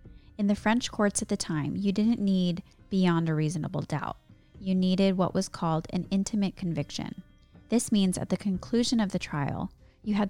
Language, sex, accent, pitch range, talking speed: English, female, American, 170-205 Hz, 185 wpm